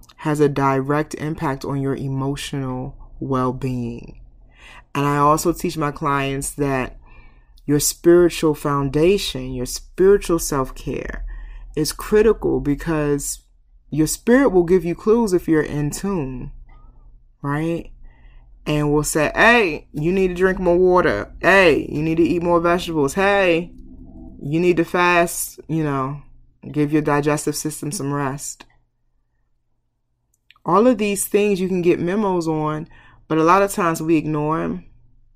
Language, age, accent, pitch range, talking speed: English, 20-39, American, 130-170 Hz, 140 wpm